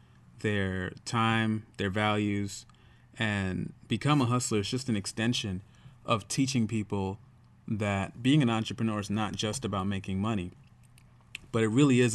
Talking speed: 145 wpm